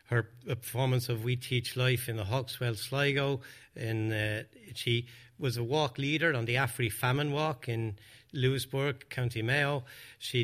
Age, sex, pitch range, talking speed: 60-79, male, 115-135 Hz, 150 wpm